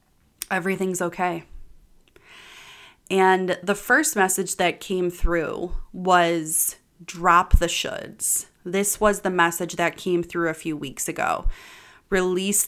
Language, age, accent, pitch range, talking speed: English, 20-39, American, 175-205 Hz, 120 wpm